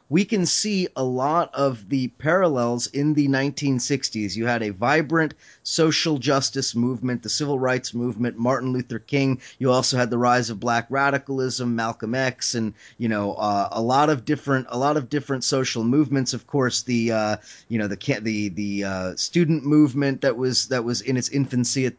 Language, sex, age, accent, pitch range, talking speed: English, male, 30-49, American, 120-145 Hz, 190 wpm